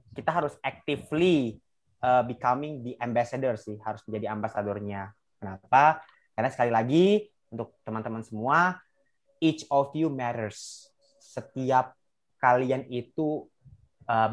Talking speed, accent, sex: 110 wpm, native, male